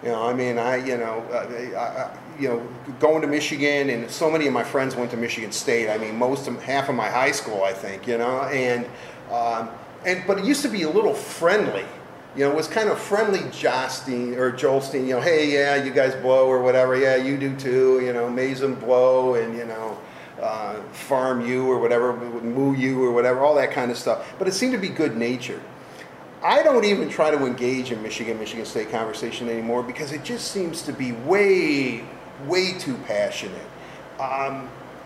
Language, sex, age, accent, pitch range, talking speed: English, male, 40-59, American, 125-180 Hz, 210 wpm